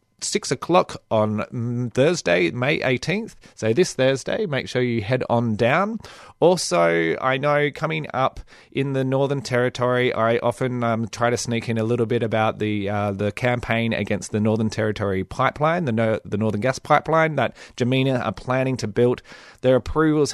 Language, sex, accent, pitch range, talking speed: English, male, Australian, 110-130 Hz, 170 wpm